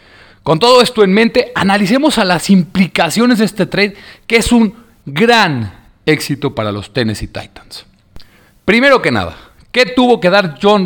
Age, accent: 40-59, Mexican